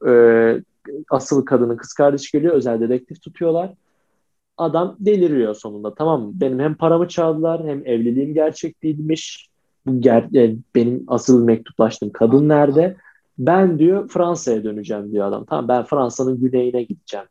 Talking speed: 130 wpm